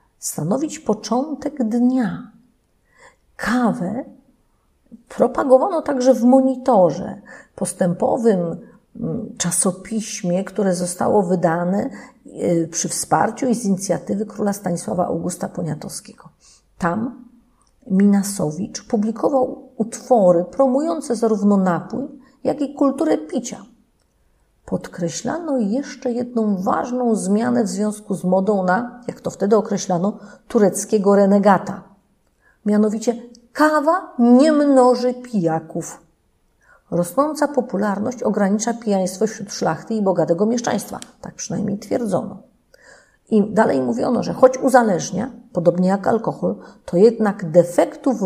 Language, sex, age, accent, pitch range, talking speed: Polish, female, 40-59, native, 190-250 Hz, 95 wpm